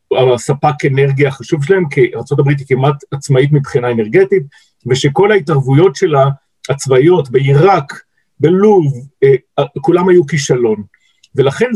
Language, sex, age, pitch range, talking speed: Hebrew, male, 50-69, 140-190 Hz, 110 wpm